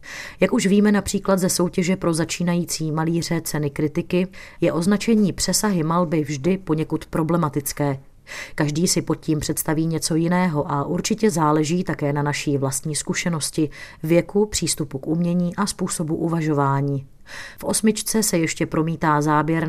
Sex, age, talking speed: female, 30-49, 140 wpm